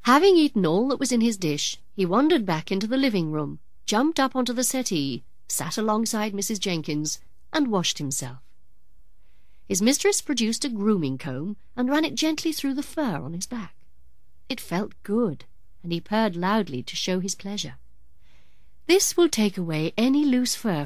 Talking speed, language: 170 wpm, English